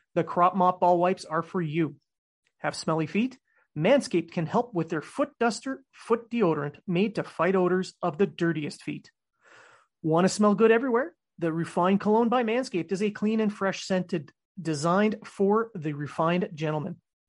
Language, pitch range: English, 165-210 Hz